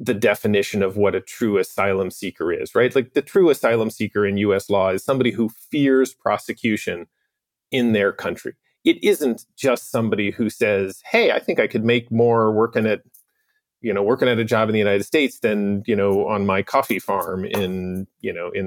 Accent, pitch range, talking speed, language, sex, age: American, 105-135 Hz, 200 wpm, English, male, 30-49